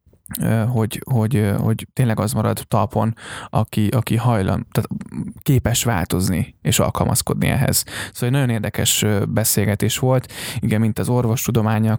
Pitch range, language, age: 110-125 Hz, Hungarian, 10-29